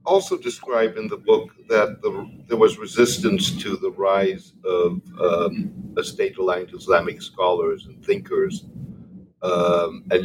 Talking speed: 130 wpm